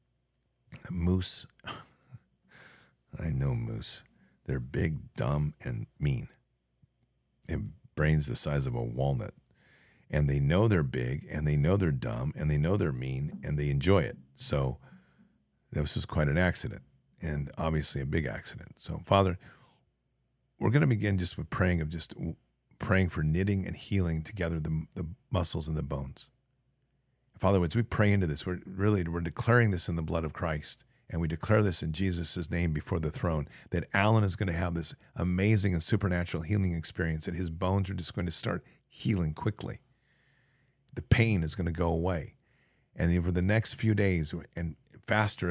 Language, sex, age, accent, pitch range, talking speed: English, male, 50-69, American, 80-105 Hz, 175 wpm